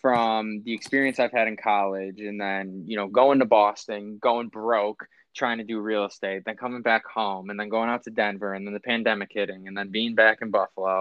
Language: English